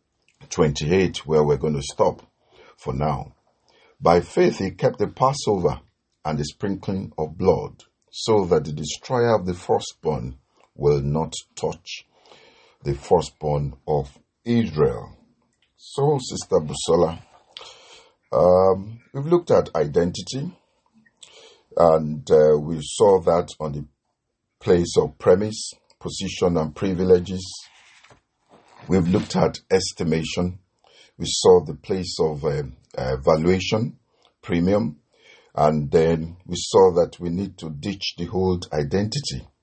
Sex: male